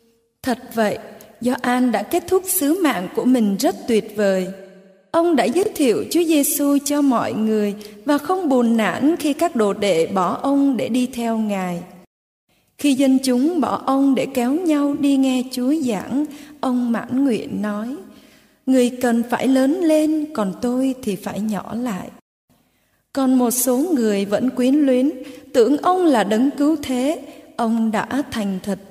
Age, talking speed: 20-39, 170 wpm